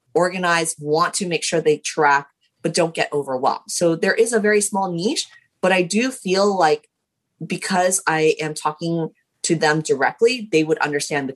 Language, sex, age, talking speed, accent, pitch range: English, female, 30-49, 180 wpm, American, 150-195 Hz